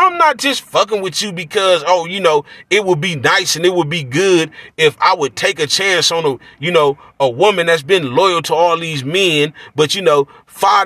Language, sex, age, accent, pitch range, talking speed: English, male, 30-49, American, 155-215 Hz, 230 wpm